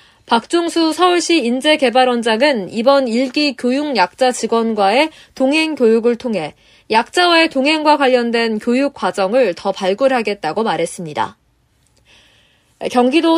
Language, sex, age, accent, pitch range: Korean, female, 20-39, native, 230-310 Hz